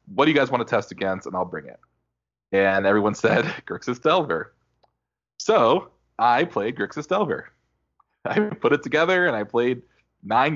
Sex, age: male, 20-39